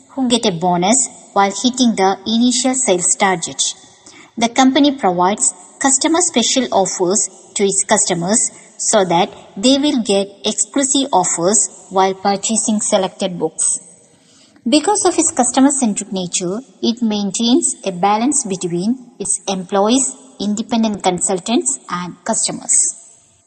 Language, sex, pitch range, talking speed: English, male, 195-270 Hz, 120 wpm